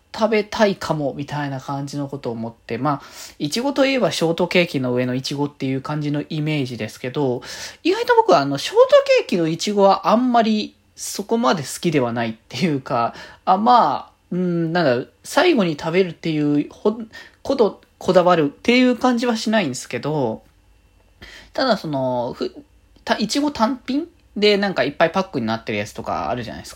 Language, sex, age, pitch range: Japanese, male, 20-39, 135-220 Hz